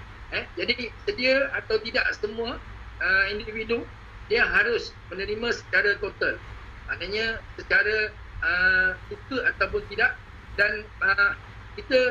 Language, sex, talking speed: Malay, male, 90 wpm